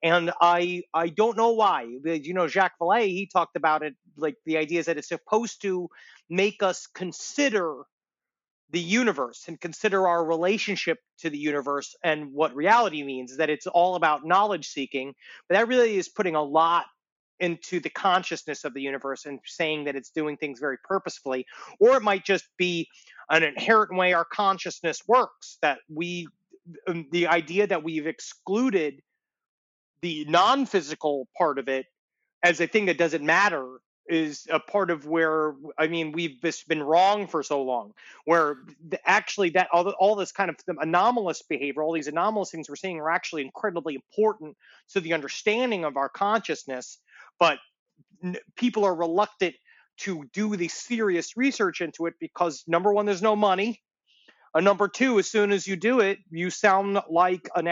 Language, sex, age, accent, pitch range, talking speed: English, male, 30-49, American, 155-200 Hz, 170 wpm